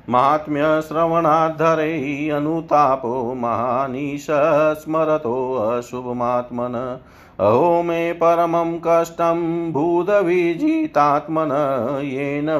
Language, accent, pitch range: Hindi, native, 125-155 Hz